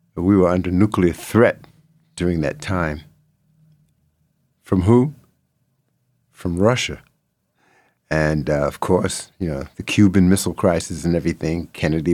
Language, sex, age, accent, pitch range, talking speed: English, male, 60-79, American, 90-125 Hz, 125 wpm